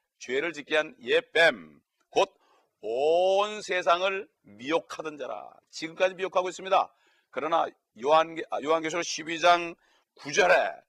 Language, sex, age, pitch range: Korean, male, 40-59, 135-190 Hz